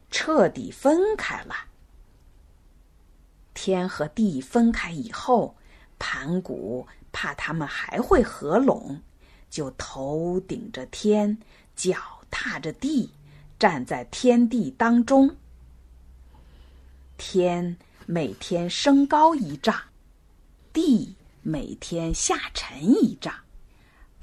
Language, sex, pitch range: Chinese, female, 145-240 Hz